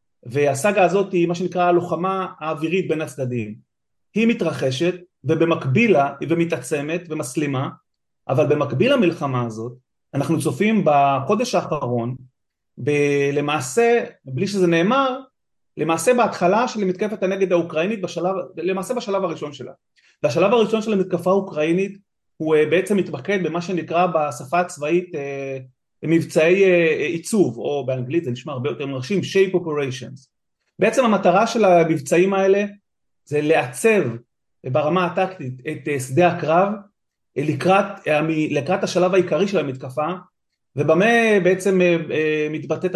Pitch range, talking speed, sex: 145-185 Hz, 125 wpm, male